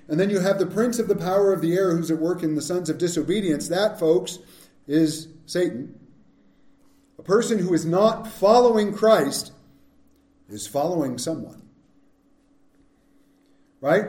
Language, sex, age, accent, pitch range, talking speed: English, male, 50-69, American, 160-250 Hz, 150 wpm